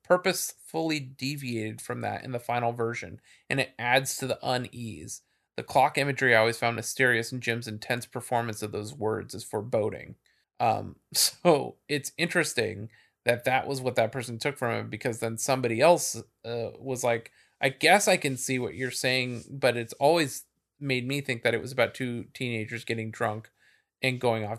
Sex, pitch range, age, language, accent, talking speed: male, 115-135 Hz, 30-49, English, American, 185 wpm